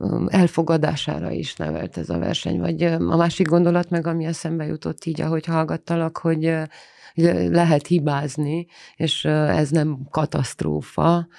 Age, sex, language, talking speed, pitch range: 30-49, female, Hungarian, 125 wpm, 145-165 Hz